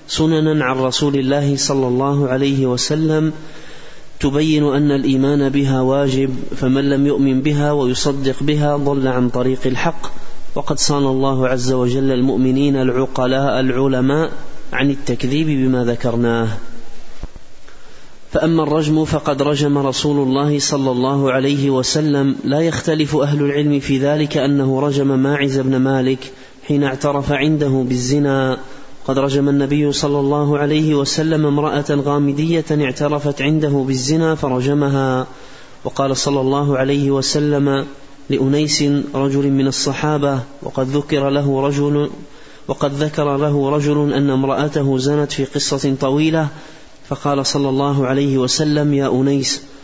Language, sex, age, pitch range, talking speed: Arabic, male, 30-49, 135-145 Hz, 125 wpm